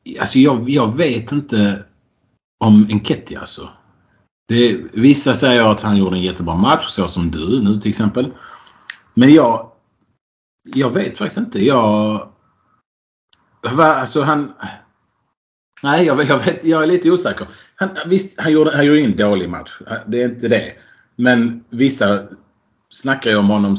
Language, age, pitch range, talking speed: Swedish, 30-49, 105-135 Hz, 155 wpm